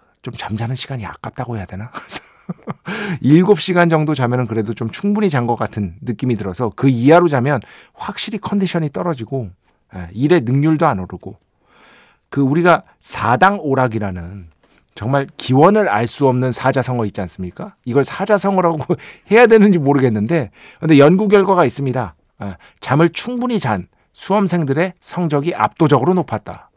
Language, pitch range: Korean, 115-180 Hz